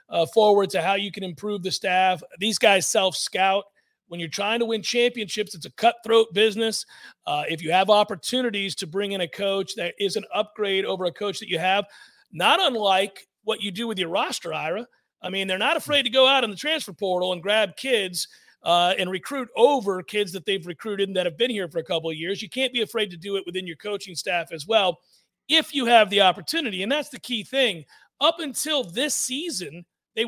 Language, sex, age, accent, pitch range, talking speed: English, male, 40-59, American, 185-240 Hz, 220 wpm